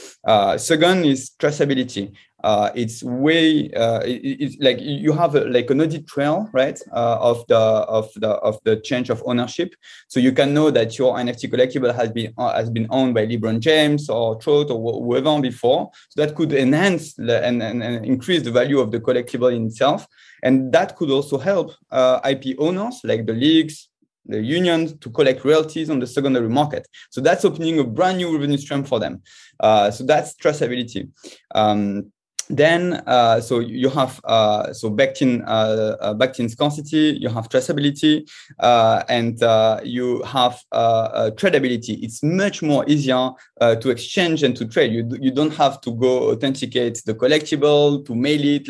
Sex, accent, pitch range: male, French, 120-150 Hz